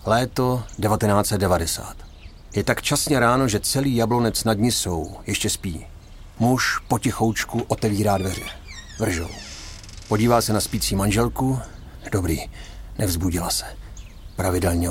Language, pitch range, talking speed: Czech, 90-120 Hz, 115 wpm